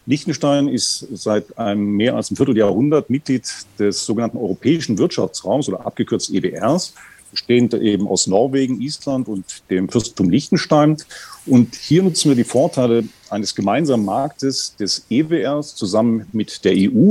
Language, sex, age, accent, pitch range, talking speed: German, male, 40-59, German, 110-140 Hz, 140 wpm